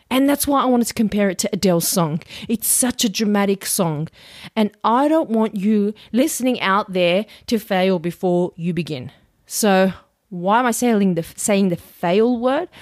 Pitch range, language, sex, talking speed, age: 180-230 Hz, English, female, 180 wpm, 30-49